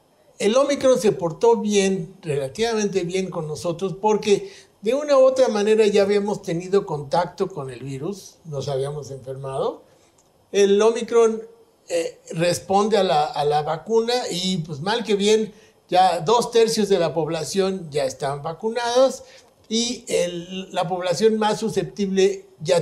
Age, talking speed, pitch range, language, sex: 60-79, 140 wpm, 170-230 Hz, Spanish, male